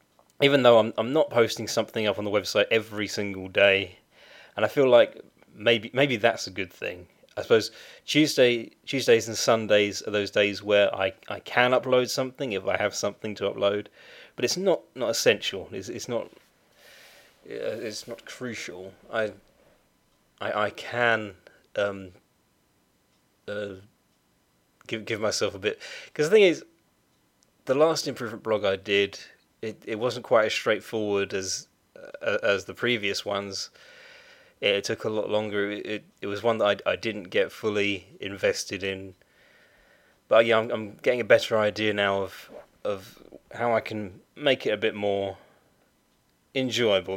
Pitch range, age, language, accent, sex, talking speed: 100-140 Hz, 30-49, English, British, male, 165 wpm